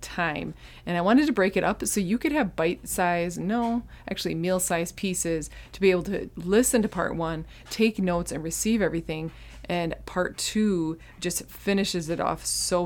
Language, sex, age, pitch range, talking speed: English, female, 20-39, 165-190 Hz, 185 wpm